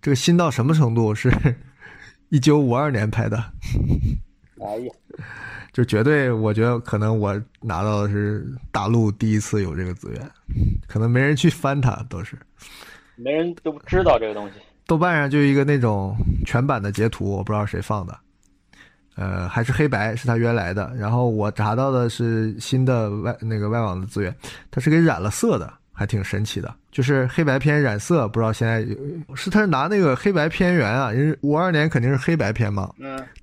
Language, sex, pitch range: Chinese, male, 105-140 Hz